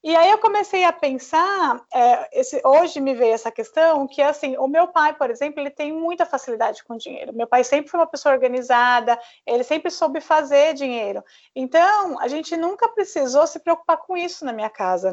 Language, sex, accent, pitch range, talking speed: Portuguese, female, Brazilian, 255-340 Hz, 200 wpm